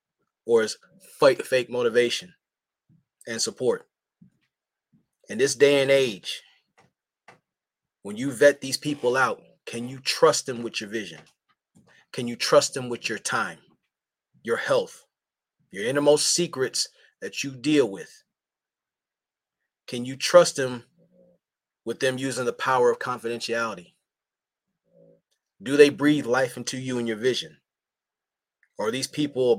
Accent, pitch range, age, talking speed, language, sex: American, 120-150 Hz, 30-49, 130 wpm, English, male